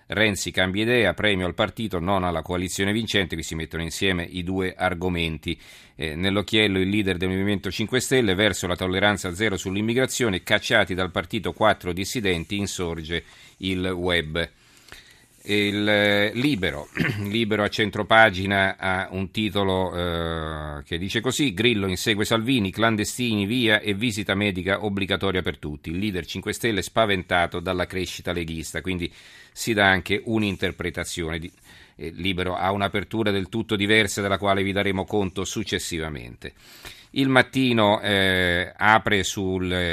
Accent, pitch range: native, 90-105 Hz